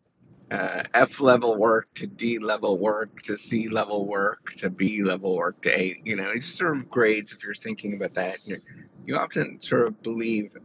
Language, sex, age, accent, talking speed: English, male, 30-49, American, 175 wpm